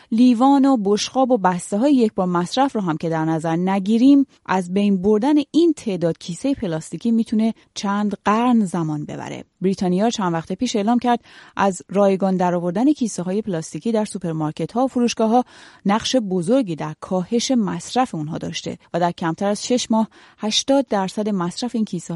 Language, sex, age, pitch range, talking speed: Persian, female, 30-49, 175-235 Hz, 175 wpm